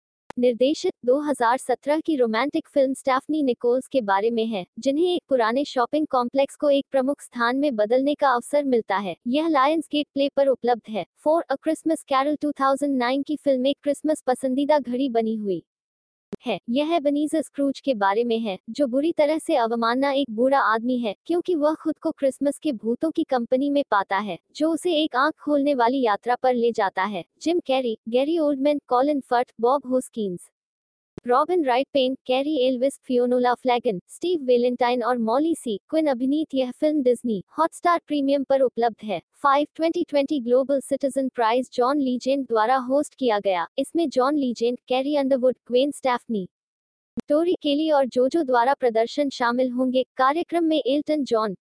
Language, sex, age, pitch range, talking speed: Hindi, female, 20-39, 245-290 Hz, 170 wpm